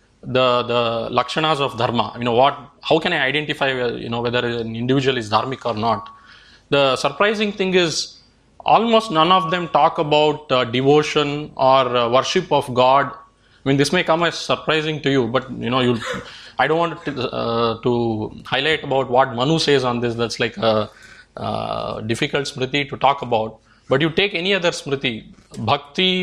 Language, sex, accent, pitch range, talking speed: English, male, Indian, 120-155 Hz, 190 wpm